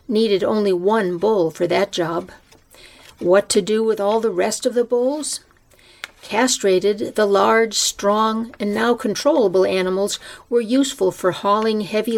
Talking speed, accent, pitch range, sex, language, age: 150 wpm, American, 190-235 Hz, female, English, 50-69